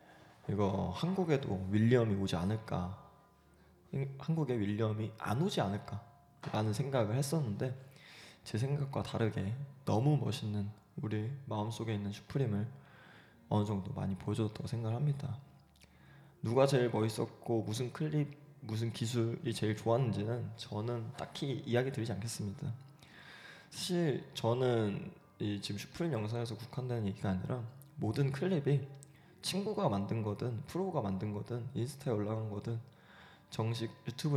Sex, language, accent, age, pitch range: male, Korean, native, 20-39, 105-140 Hz